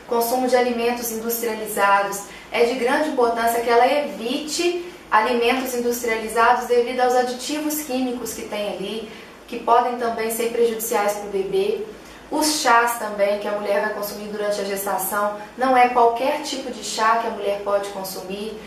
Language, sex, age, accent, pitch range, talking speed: Portuguese, female, 20-39, Brazilian, 215-250 Hz, 160 wpm